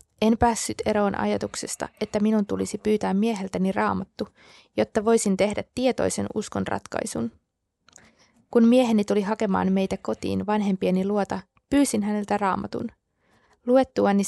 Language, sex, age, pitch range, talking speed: Finnish, female, 20-39, 185-220 Hz, 120 wpm